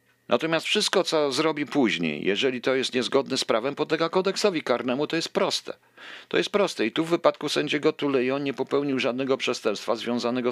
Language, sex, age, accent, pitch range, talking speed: Polish, male, 50-69, native, 120-160 Hz, 175 wpm